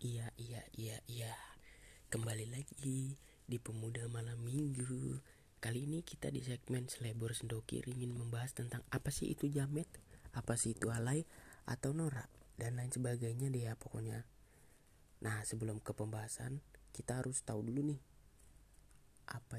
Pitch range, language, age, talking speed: 115-130 Hz, Indonesian, 20-39, 140 wpm